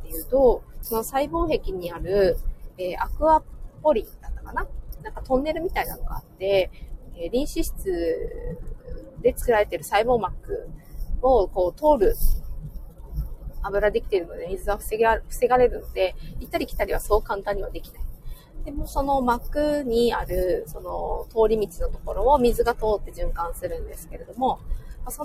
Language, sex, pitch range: Japanese, female, 200-335 Hz